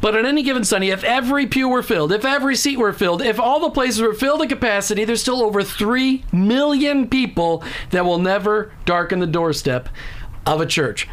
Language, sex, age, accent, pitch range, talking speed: English, male, 40-59, American, 165-225 Hz, 205 wpm